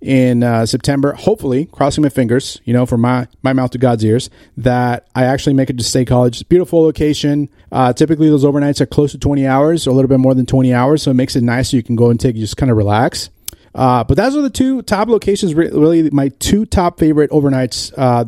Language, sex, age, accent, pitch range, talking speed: English, male, 30-49, American, 120-150 Hz, 250 wpm